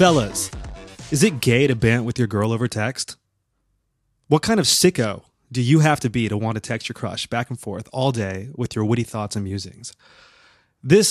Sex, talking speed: male, 205 wpm